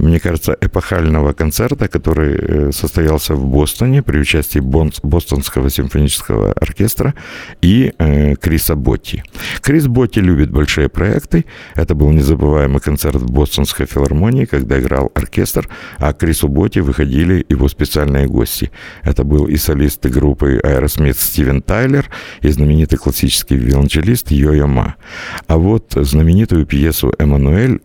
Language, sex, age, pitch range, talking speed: Russian, male, 60-79, 70-95 Hz, 125 wpm